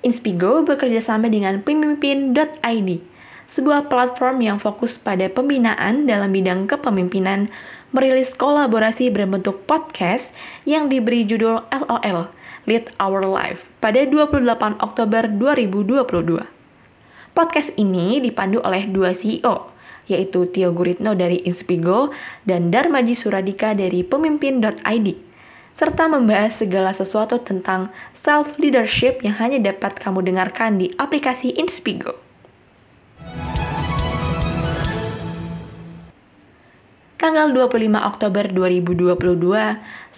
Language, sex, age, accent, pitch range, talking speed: Indonesian, female, 20-39, native, 195-270 Hz, 95 wpm